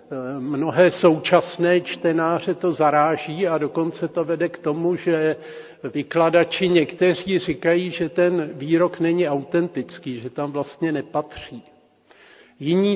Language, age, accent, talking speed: Czech, 50-69, native, 115 wpm